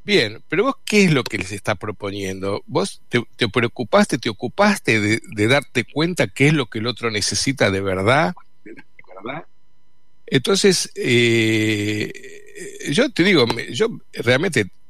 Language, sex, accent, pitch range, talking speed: Spanish, male, Argentinian, 110-170 Hz, 150 wpm